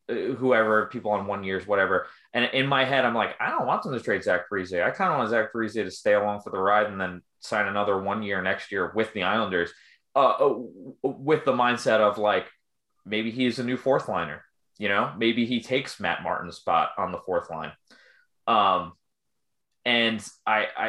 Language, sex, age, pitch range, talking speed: English, male, 20-39, 100-130 Hz, 200 wpm